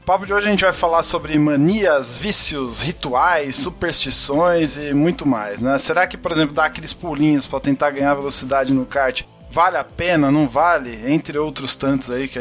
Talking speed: 190 wpm